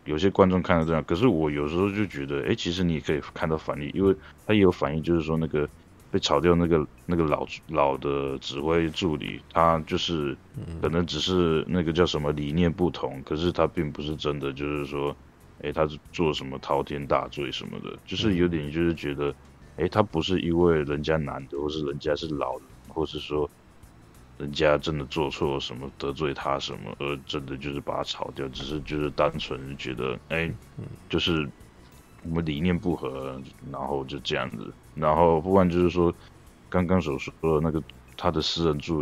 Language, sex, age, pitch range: Chinese, male, 20-39, 70-85 Hz